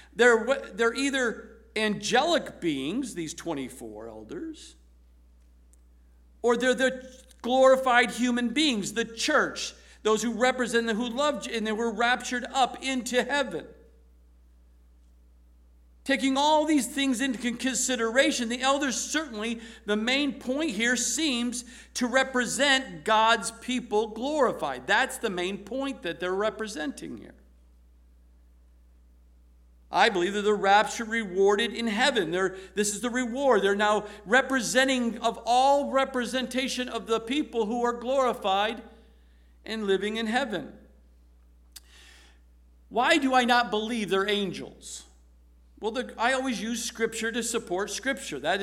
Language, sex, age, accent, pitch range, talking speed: English, male, 50-69, American, 180-255 Hz, 125 wpm